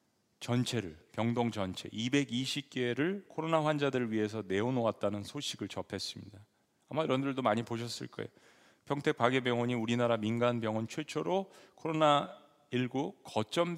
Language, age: Korean, 40-59